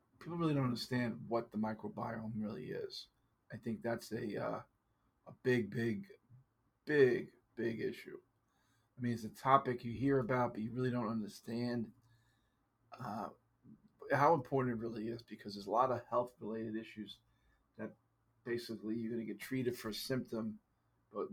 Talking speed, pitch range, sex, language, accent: 160 wpm, 110-120 Hz, male, English, American